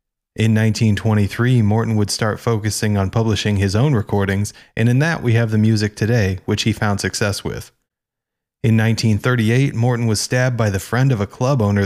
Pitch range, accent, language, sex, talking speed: 105-120 Hz, American, English, male, 180 wpm